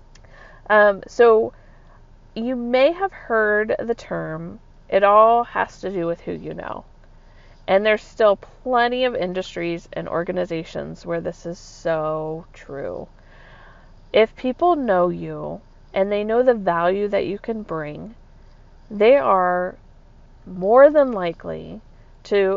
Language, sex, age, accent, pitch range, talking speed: English, female, 40-59, American, 170-230 Hz, 130 wpm